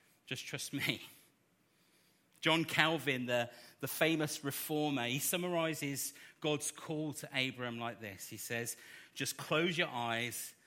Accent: British